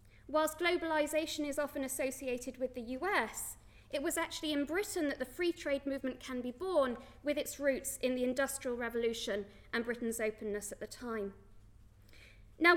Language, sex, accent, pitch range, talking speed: English, female, British, 245-325 Hz, 165 wpm